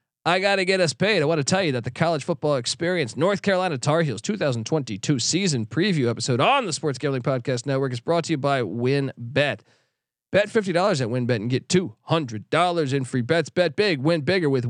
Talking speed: 215 wpm